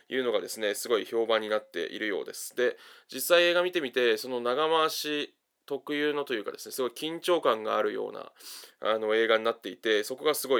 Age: 20-39